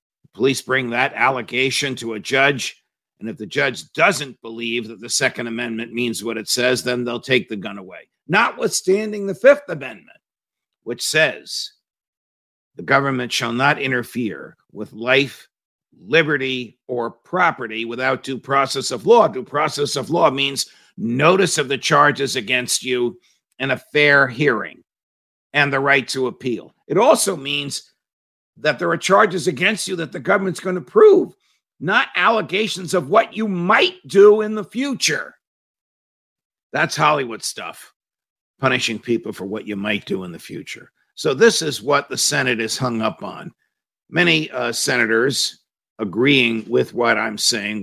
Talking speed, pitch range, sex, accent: 155 wpm, 115-165 Hz, male, American